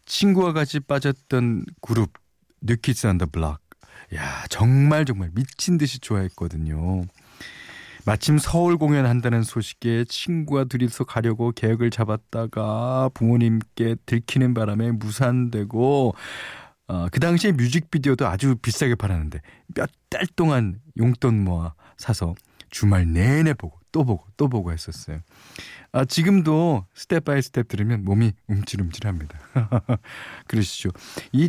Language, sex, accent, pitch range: Korean, male, native, 95-140 Hz